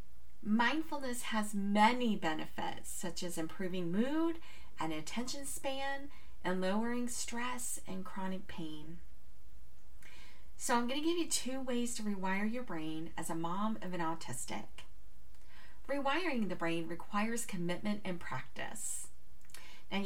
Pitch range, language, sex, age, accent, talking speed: 160-235 Hz, English, female, 40-59, American, 125 wpm